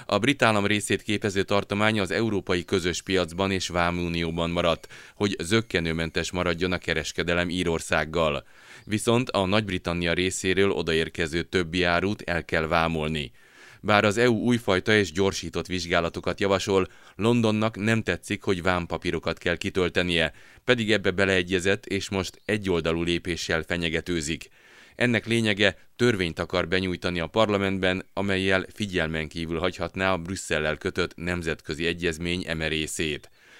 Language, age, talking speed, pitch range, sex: Hungarian, 30-49, 125 wpm, 85-100 Hz, male